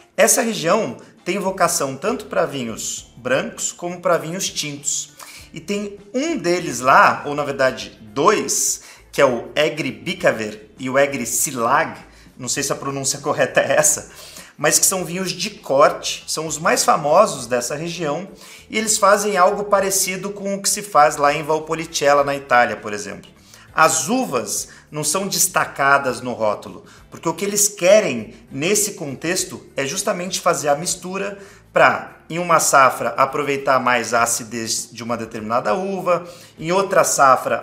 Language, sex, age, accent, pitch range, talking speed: Portuguese, male, 30-49, Brazilian, 140-190 Hz, 160 wpm